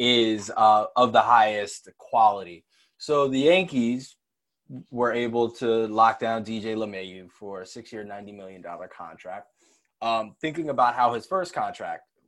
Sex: male